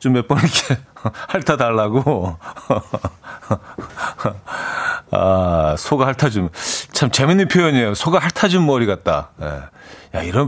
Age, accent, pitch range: 40-59, native, 105-160 Hz